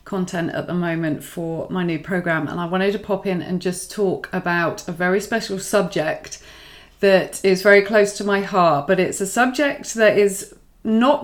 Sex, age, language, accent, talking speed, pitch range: female, 30-49, English, British, 190 wpm, 180-215 Hz